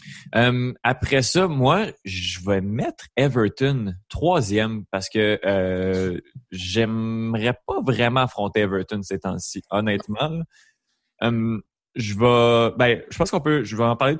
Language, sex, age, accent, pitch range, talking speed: French, male, 20-39, Canadian, 100-125 Hz, 115 wpm